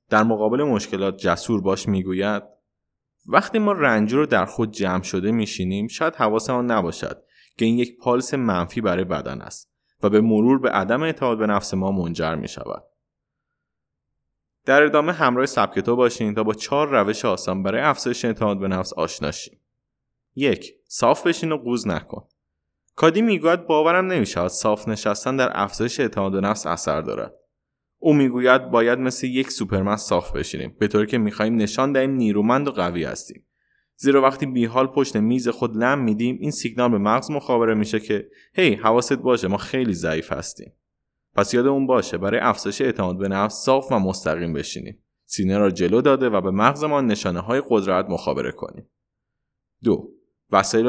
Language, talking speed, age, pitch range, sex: Persian, 165 wpm, 20-39, 100-130 Hz, male